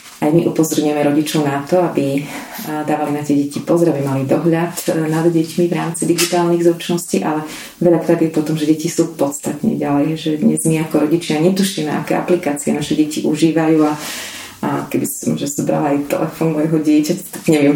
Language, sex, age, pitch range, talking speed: Slovak, female, 30-49, 150-170 Hz, 180 wpm